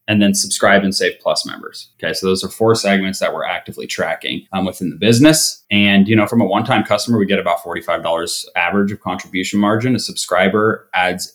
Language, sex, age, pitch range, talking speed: English, male, 30-49, 100-125 Hz, 205 wpm